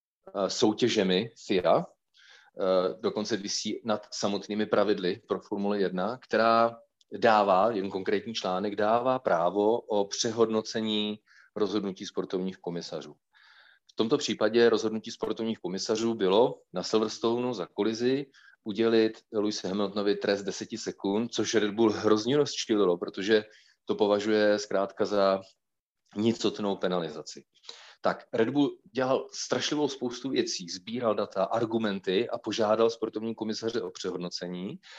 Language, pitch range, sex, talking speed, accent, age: Czech, 100-115 Hz, male, 115 wpm, native, 40-59